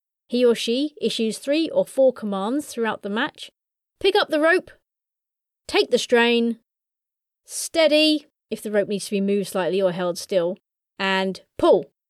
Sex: female